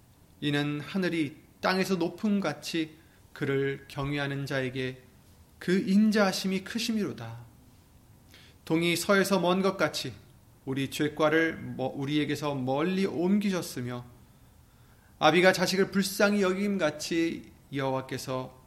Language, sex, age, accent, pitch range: Korean, male, 30-49, native, 130-195 Hz